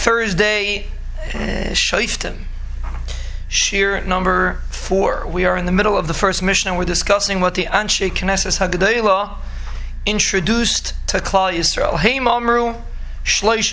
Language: English